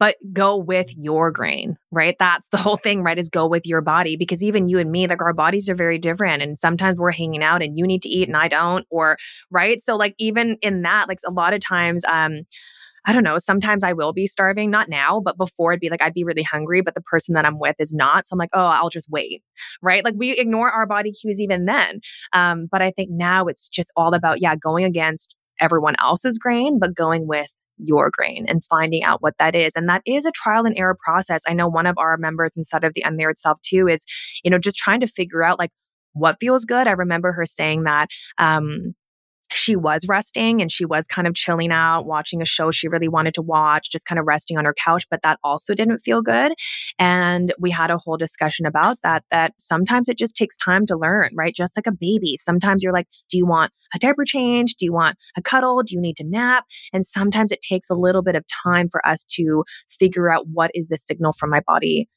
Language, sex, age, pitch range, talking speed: English, female, 20-39, 160-195 Hz, 245 wpm